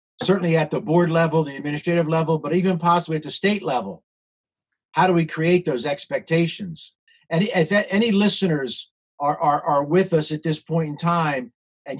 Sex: male